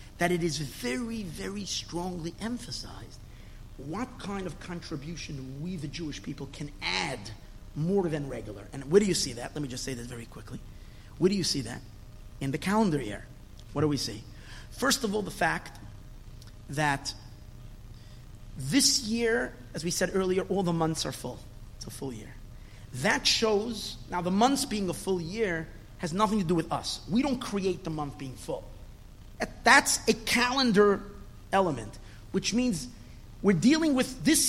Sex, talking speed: male, 170 wpm